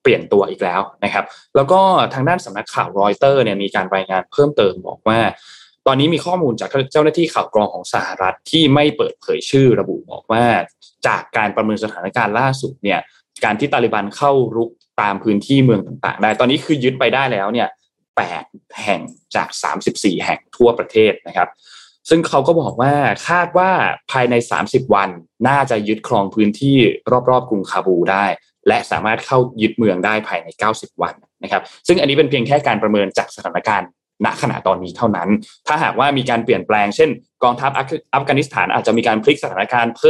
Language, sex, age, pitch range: Thai, male, 20-39, 105-145 Hz